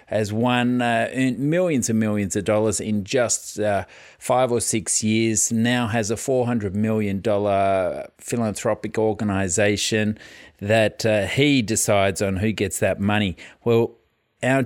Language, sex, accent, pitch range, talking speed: English, male, Australian, 100-120 Hz, 135 wpm